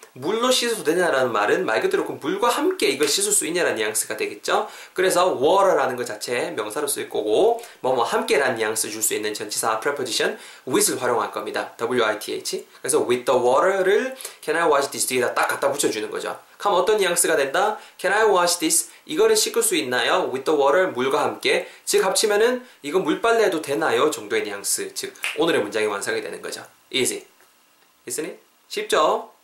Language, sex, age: Korean, male, 20-39